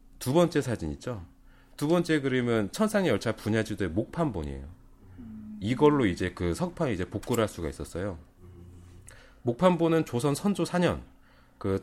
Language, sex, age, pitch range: Korean, male, 30-49, 95-150 Hz